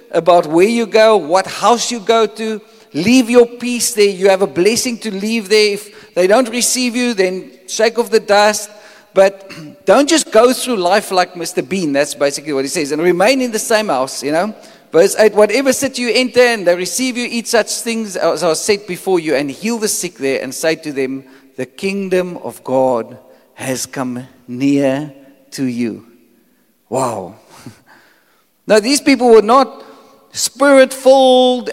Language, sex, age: English, male, 50-69